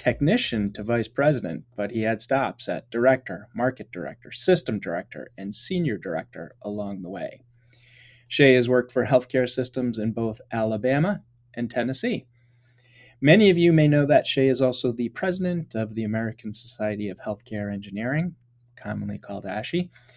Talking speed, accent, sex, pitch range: 155 wpm, American, male, 120-145 Hz